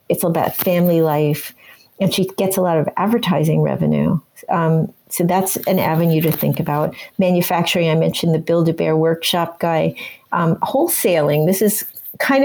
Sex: female